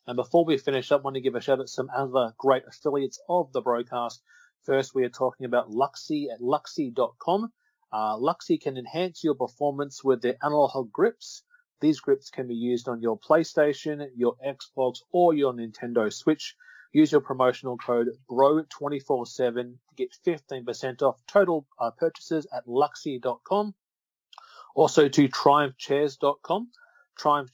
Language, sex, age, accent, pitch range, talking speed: English, male, 30-49, Australian, 125-165 Hz, 150 wpm